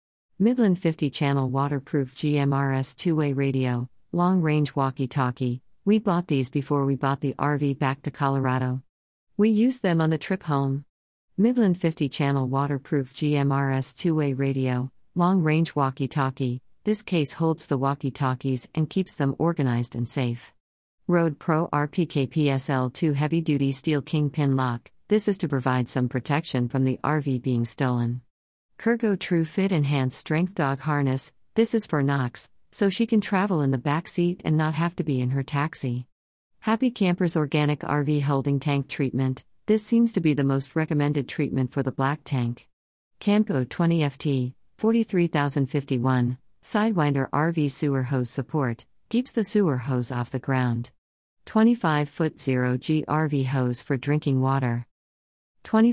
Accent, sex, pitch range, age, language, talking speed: American, female, 130-165 Hz, 40-59, English, 165 wpm